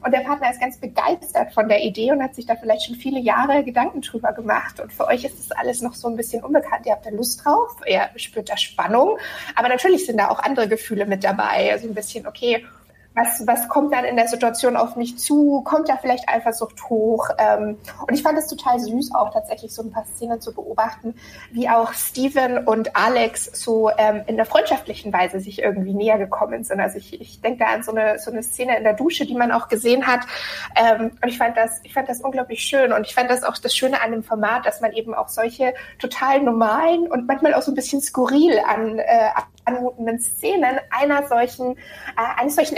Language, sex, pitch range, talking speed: German, female, 225-285 Hz, 225 wpm